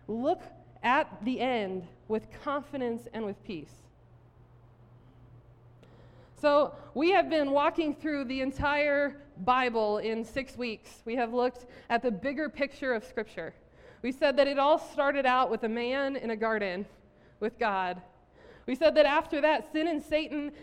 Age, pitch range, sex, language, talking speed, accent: 20-39, 220-280 Hz, female, English, 155 wpm, American